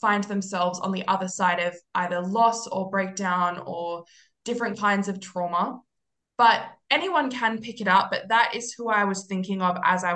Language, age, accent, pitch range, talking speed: English, 20-39, Australian, 185-230 Hz, 190 wpm